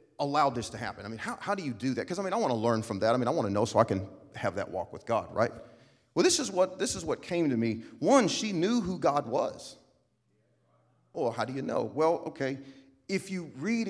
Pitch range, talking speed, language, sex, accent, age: 125-180 Hz, 270 wpm, English, male, American, 40-59